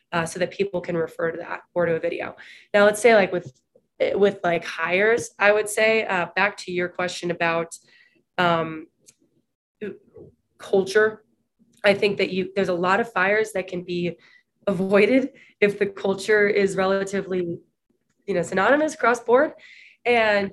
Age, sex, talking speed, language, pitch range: 20-39, female, 160 wpm, English, 175-205 Hz